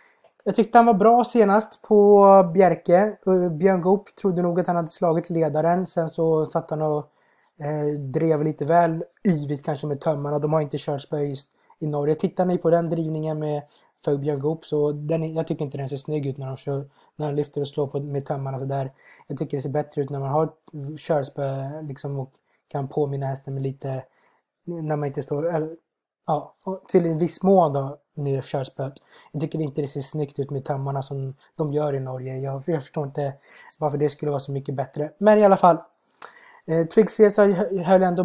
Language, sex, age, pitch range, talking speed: Swedish, male, 20-39, 145-170 Hz, 200 wpm